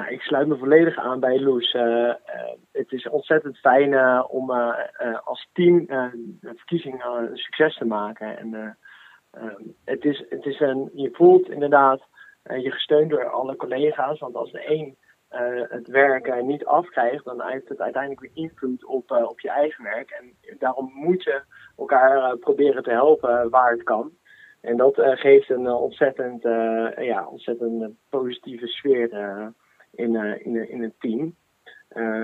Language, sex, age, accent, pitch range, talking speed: Dutch, male, 20-39, Dutch, 120-140 Hz, 190 wpm